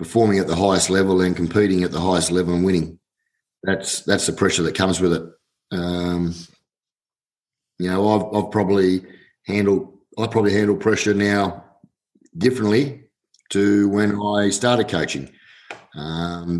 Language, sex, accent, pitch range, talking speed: English, male, Australian, 85-100 Hz, 140 wpm